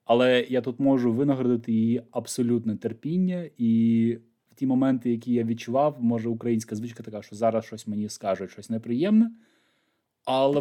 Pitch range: 105-150 Hz